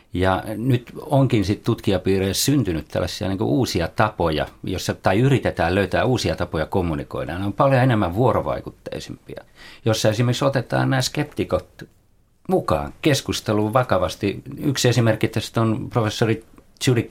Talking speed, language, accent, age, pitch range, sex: 125 wpm, Finnish, native, 50-69, 95-120 Hz, male